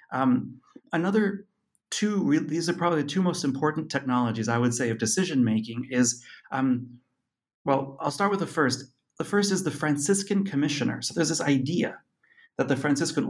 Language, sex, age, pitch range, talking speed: English, male, 30-49, 125-170 Hz, 165 wpm